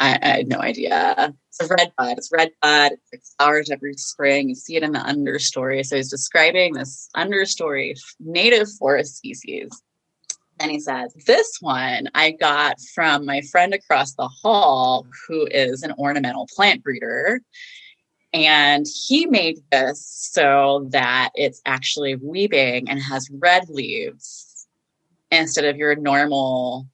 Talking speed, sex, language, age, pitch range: 145 wpm, female, English, 20-39, 145-245 Hz